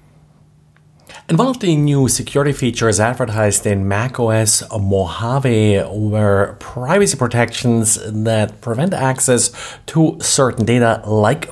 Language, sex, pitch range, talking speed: English, male, 100-125 Hz, 110 wpm